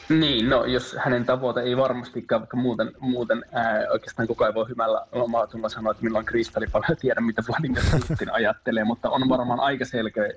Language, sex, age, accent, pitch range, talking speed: Finnish, male, 20-39, native, 105-120 Hz, 185 wpm